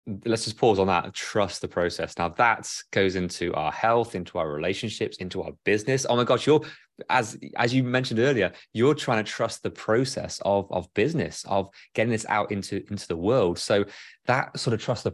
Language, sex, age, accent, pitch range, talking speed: English, male, 20-39, British, 95-120 Hz, 205 wpm